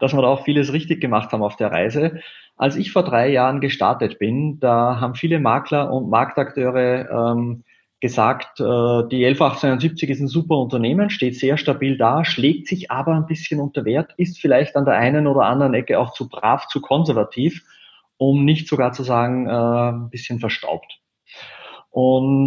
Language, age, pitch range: German, 30-49, 120-150 Hz